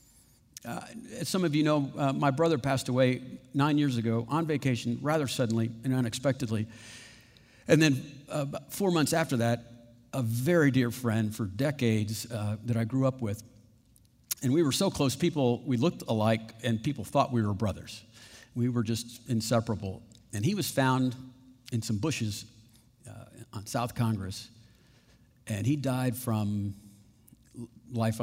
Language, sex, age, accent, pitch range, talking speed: English, male, 50-69, American, 115-135 Hz, 155 wpm